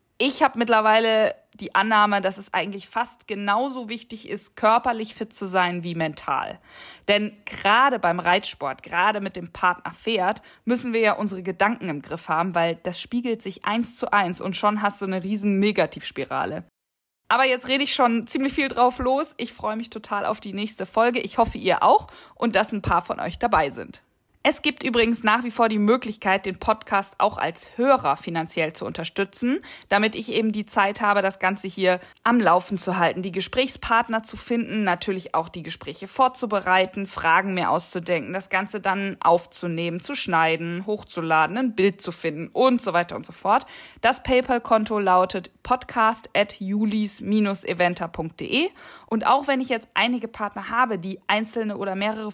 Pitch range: 190-235 Hz